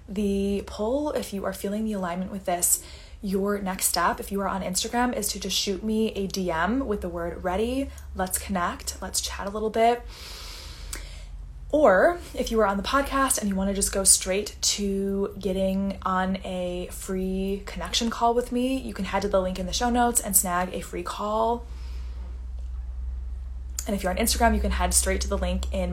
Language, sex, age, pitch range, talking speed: English, female, 10-29, 180-210 Hz, 200 wpm